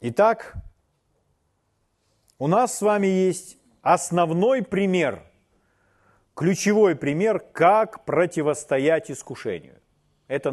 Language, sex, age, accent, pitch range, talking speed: Russian, male, 40-59, native, 125-195 Hz, 80 wpm